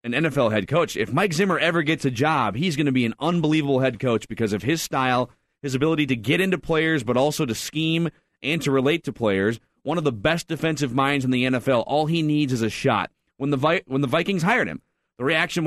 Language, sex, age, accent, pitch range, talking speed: English, male, 30-49, American, 140-180 Hz, 240 wpm